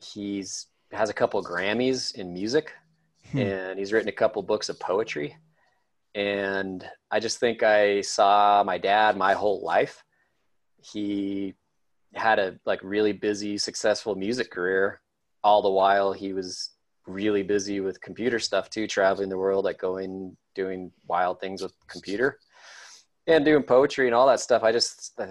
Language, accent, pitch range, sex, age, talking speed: English, American, 95-110 Hz, male, 30-49, 160 wpm